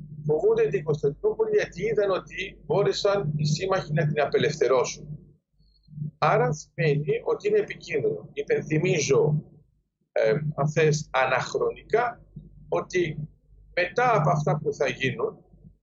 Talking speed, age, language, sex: 105 wpm, 50-69, Greek, male